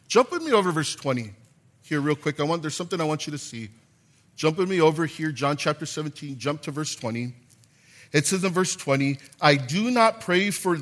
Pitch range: 145-205 Hz